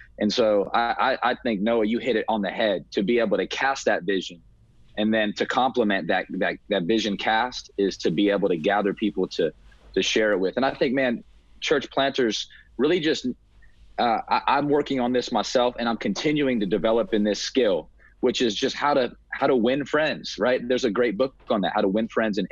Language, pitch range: English, 105-145 Hz